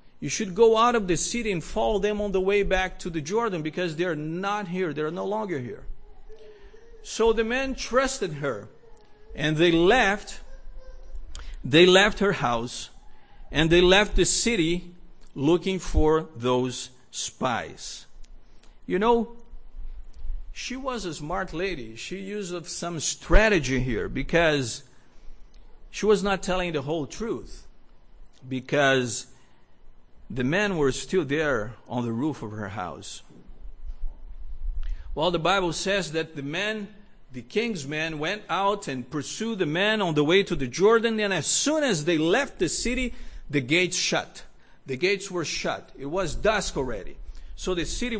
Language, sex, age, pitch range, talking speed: English, male, 50-69, 130-205 Hz, 155 wpm